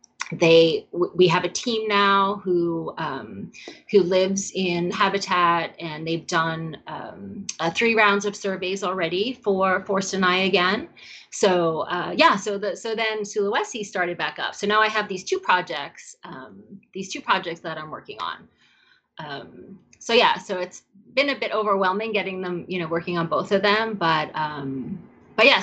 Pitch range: 170-210 Hz